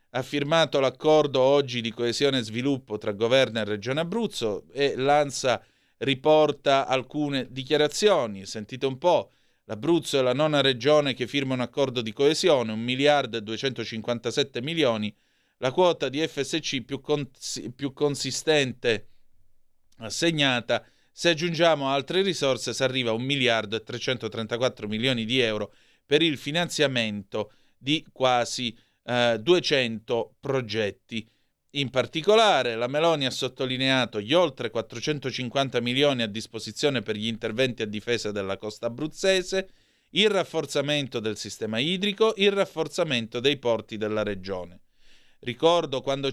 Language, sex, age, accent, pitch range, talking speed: Italian, male, 30-49, native, 115-150 Hz, 130 wpm